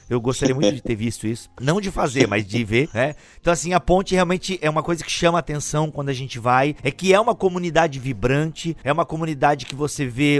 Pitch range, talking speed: 135-180 Hz, 235 wpm